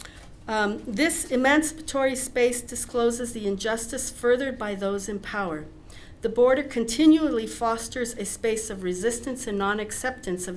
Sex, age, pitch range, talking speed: female, 50-69, 195-255 Hz, 130 wpm